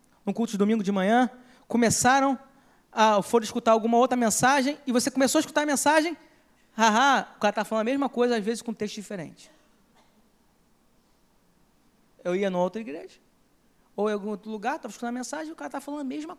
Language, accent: Portuguese, Brazilian